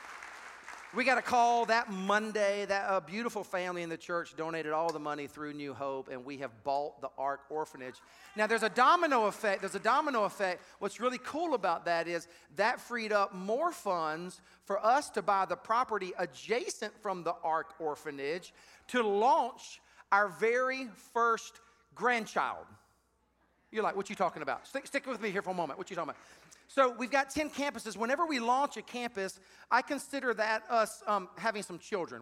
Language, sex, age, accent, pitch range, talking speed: English, male, 40-59, American, 175-250 Hz, 185 wpm